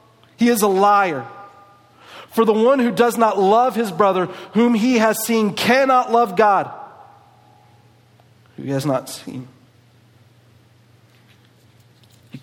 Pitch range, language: 150-235 Hz, English